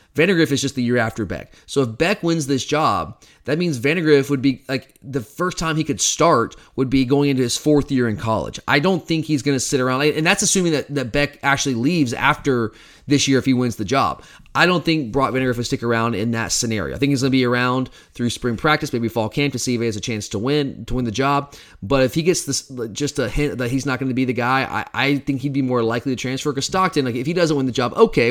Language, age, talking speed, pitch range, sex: English, 30-49, 275 wpm, 125-145 Hz, male